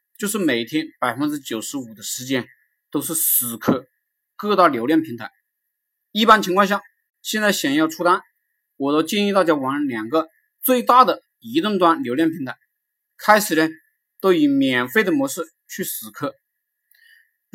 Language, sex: Chinese, male